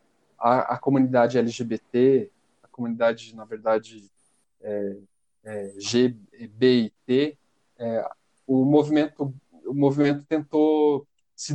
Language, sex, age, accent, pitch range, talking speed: Portuguese, male, 20-39, Brazilian, 115-140 Hz, 110 wpm